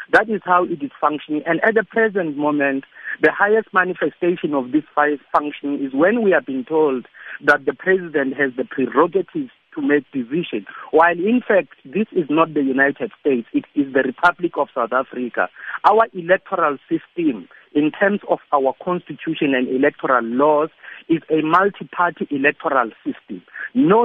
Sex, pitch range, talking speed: male, 150-215 Hz, 165 wpm